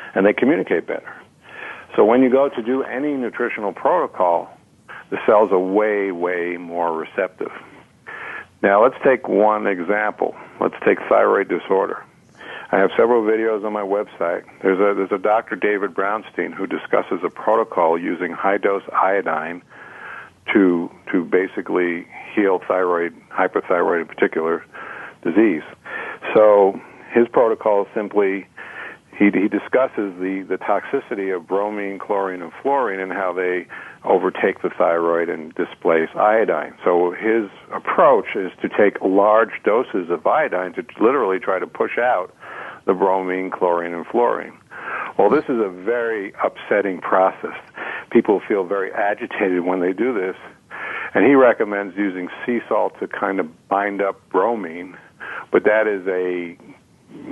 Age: 60-79